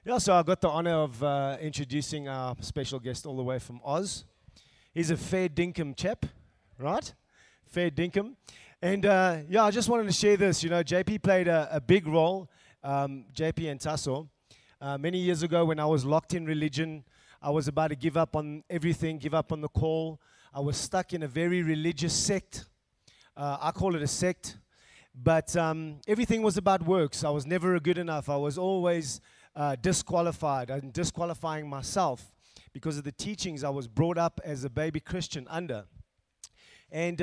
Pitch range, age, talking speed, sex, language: 145-180 Hz, 20-39, 190 wpm, male, English